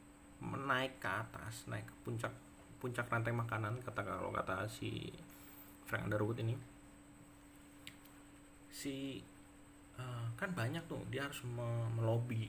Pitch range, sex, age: 100-120 Hz, male, 30-49